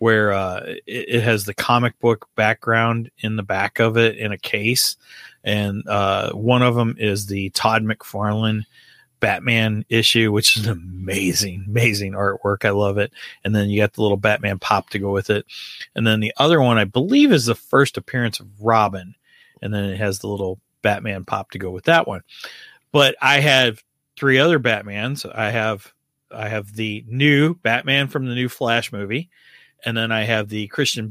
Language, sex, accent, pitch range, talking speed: English, male, American, 105-140 Hz, 190 wpm